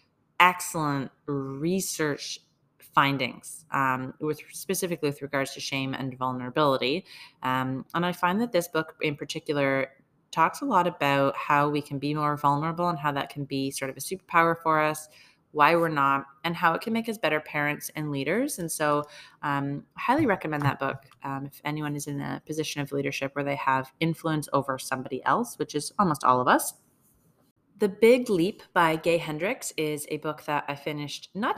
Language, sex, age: English, female, 30-49